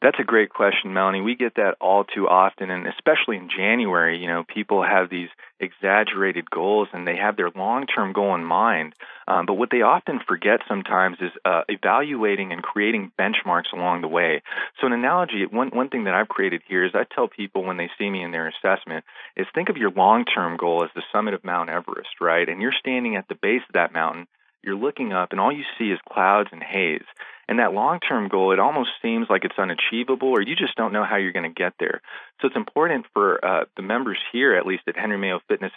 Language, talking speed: English, 225 wpm